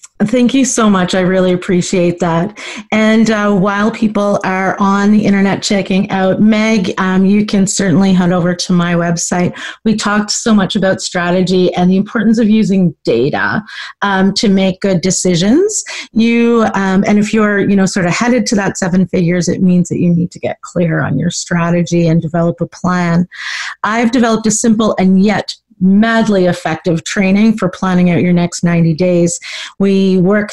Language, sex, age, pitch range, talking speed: English, female, 40-59, 180-210 Hz, 180 wpm